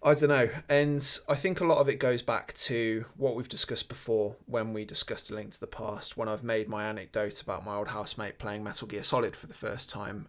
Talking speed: 245 wpm